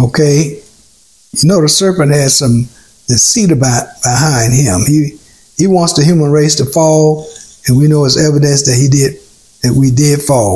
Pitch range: 125-155 Hz